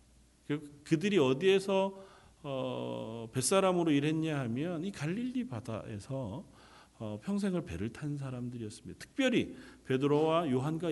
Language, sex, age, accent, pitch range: Korean, male, 40-59, native, 120-170 Hz